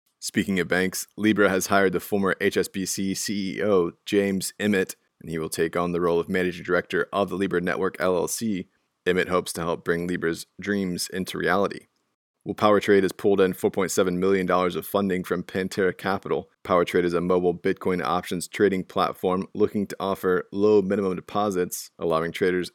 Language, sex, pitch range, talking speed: English, male, 90-100 Hz, 170 wpm